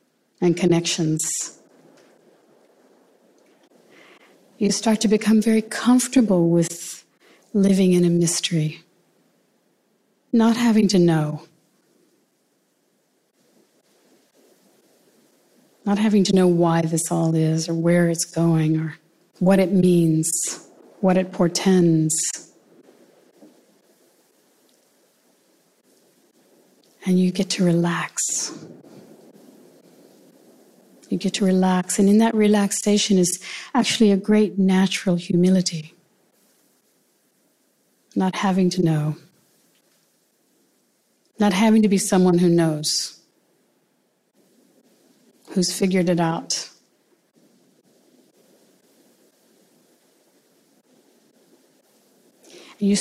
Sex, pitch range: female, 170-215 Hz